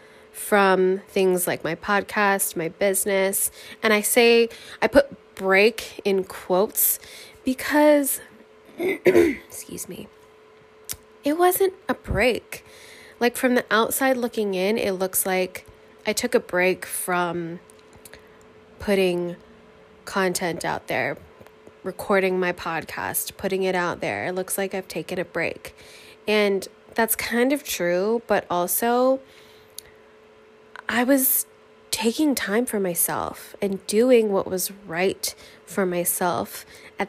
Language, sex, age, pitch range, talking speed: English, female, 20-39, 185-225 Hz, 120 wpm